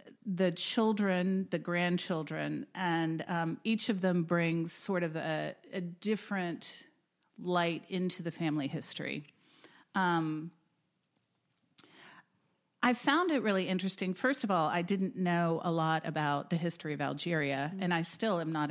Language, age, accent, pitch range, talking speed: English, 40-59, American, 170-200 Hz, 140 wpm